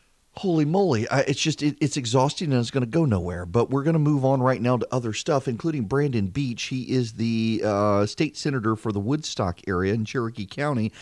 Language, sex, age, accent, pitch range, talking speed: English, male, 40-59, American, 115-155 Hz, 210 wpm